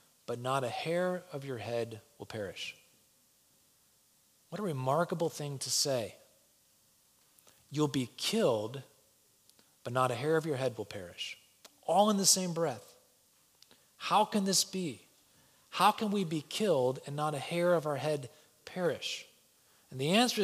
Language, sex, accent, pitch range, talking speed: English, male, American, 125-170 Hz, 155 wpm